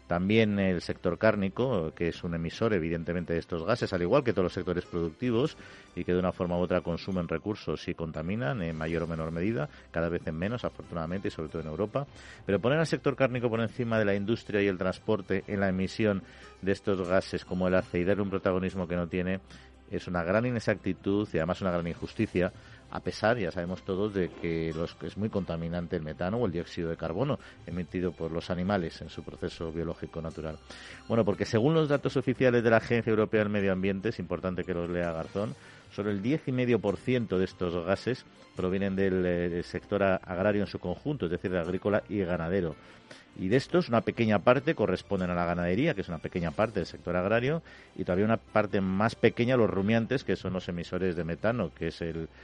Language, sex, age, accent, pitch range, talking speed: Spanish, male, 50-69, Spanish, 85-105 Hz, 210 wpm